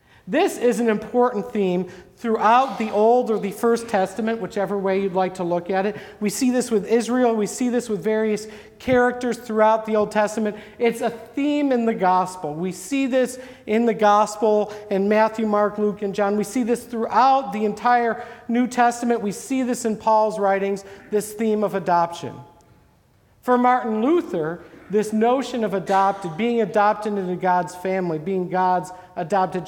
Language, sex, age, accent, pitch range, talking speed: English, male, 50-69, American, 160-230 Hz, 175 wpm